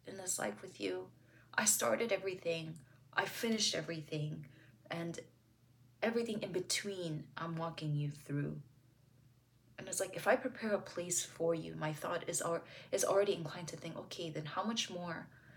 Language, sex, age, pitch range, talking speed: English, female, 20-39, 135-170 Hz, 165 wpm